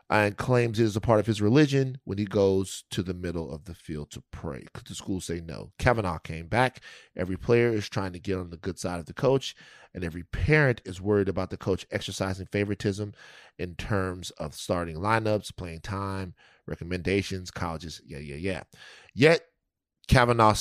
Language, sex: English, male